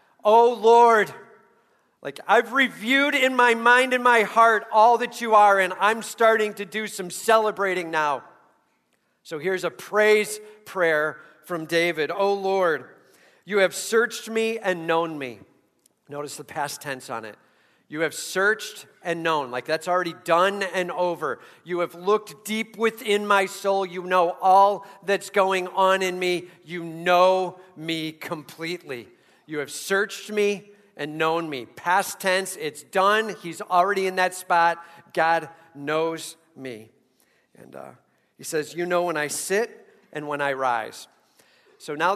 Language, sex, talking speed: English, male, 155 wpm